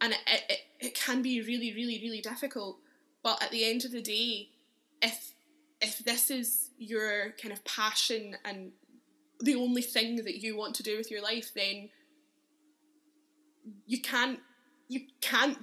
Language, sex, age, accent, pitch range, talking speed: English, female, 10-29, British, 215-260 Hz, 160 wpm